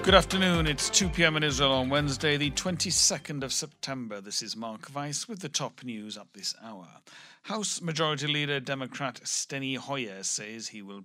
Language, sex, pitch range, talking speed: English, male, 115-150 Hz, 175 wpm